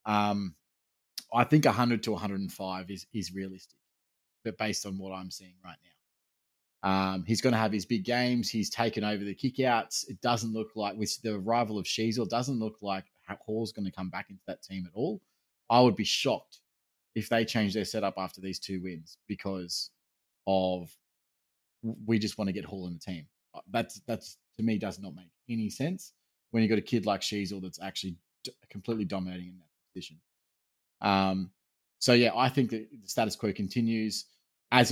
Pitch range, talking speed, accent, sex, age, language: 95-125 Hz, 200 wpm, Australian, male, 20-39, English